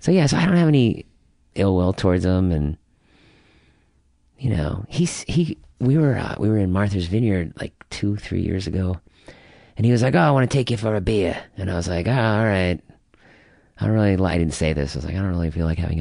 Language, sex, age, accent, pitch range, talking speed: English, male, 40-59, American, 80-110 Hz, 245 wpm